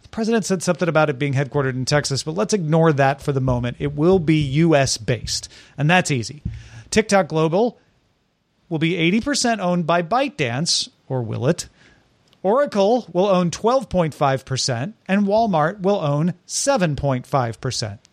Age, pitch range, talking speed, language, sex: 40-59, 145-205 Hz, 145 wpm, English, male